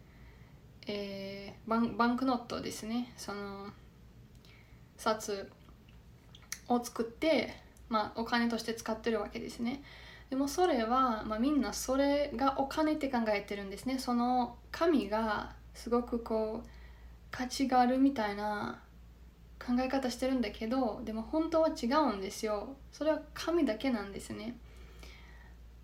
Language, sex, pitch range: English, female, 205-260 Hz